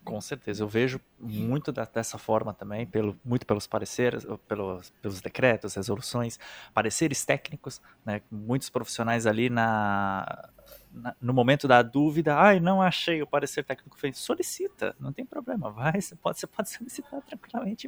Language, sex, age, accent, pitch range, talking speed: Portuguese, male, 20-39, Brazilian, 115-160 Hz, 150 wpm